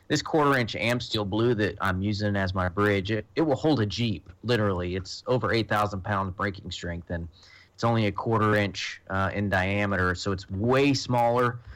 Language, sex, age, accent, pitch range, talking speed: English, male, 30-49, American, 95-110 Hz, 180 wpm